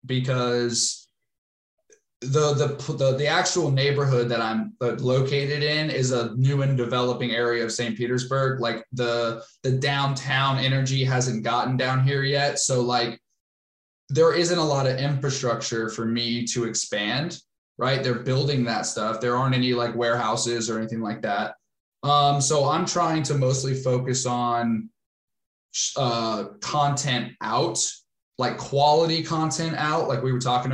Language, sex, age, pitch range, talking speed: English, male, 20-39, 120-140 Hz, 145 wpm